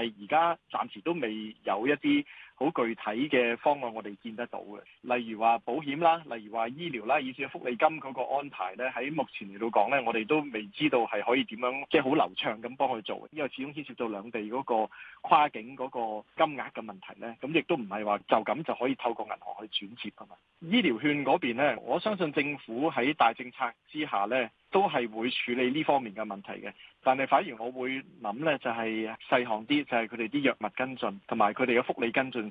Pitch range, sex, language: 115-145 Hz, male, Chinese